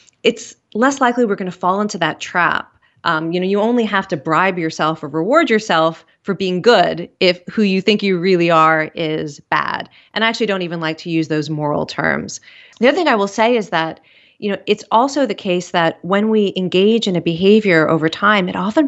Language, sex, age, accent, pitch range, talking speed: English, female, 30-49, American, 165-215 Hz, 225 wpm